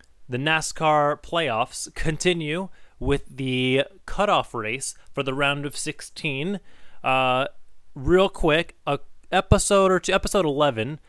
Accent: American